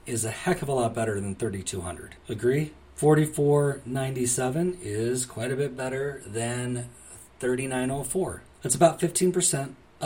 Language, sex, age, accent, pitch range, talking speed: English, male, 40-59, American, 110-130 Hz, 125 wpm